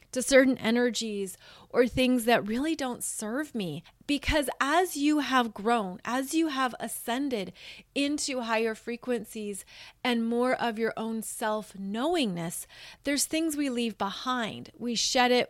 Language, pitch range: English, 215-265 Hz